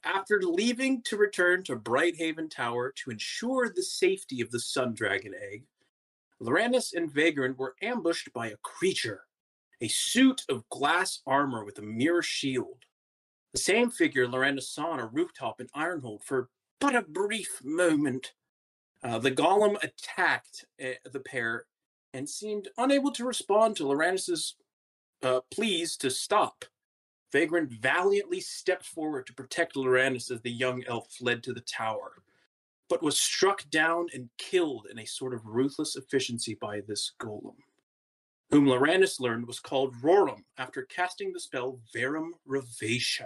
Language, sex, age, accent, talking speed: English, male, 30-49, American, 150 wpm